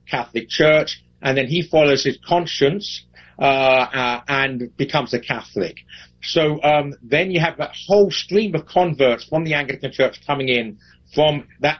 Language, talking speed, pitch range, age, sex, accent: English, 165 wpm, 120-145 Hz, 50-69, male, British